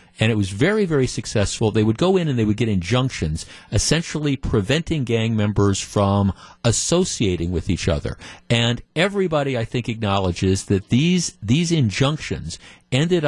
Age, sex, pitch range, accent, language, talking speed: 50-69, male, 105-145 Hz, American, English, 155 wpm